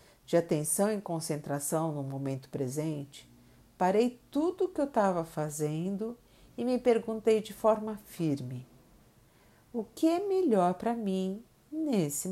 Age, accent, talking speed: 50-69, Brazilian, 130 wpm